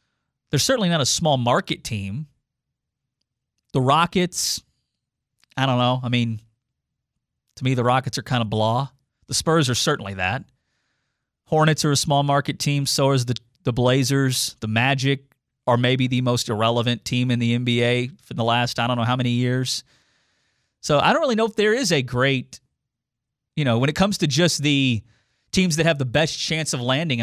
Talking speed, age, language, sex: 185 wpm, 30-49, English, male